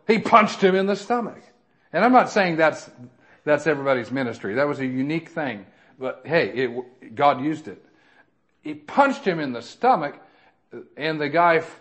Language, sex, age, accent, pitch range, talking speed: English, male, 40-59, American, 160-210 Hz, 175 wpm